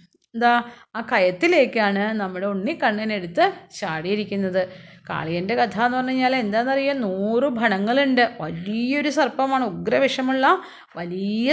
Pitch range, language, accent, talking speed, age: 195-255 Hz, Malayalam, native, 100 wpm, 30-49